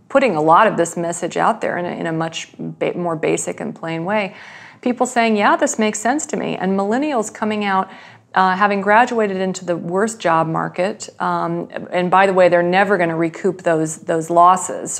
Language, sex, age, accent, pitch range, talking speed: English, female, 40-59, American, 175-215 Hz, 200 wpm